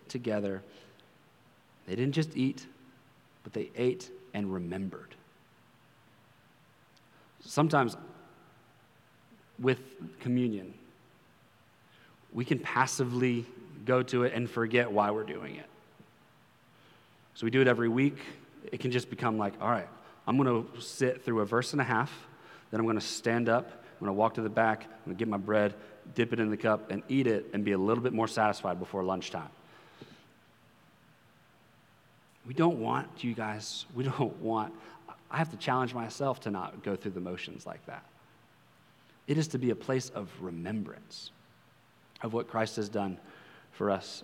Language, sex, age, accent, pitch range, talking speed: English, male, 30-49, American, 110-130 Hz, 165 wpm